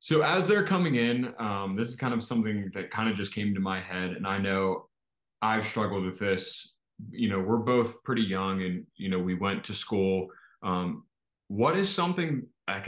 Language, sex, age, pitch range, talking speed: English, male, 20-39, 95-120 Hz, 205 wpm